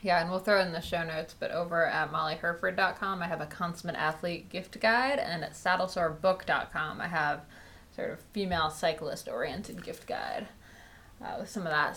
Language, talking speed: English, 180 wpm